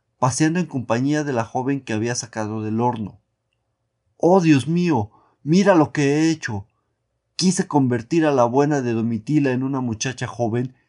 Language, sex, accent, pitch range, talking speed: Spanish, male, Mexican, 110-145 Hz, 165 wpm